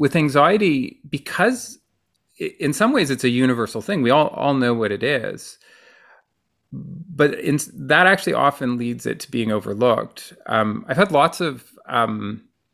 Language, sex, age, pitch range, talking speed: English, male, 30-49, 110-140 Hz, 155 wpm